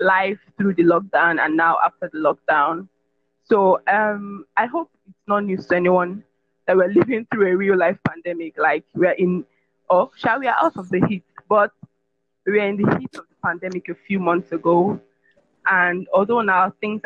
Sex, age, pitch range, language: female, 20-39, 170-200 Hz, English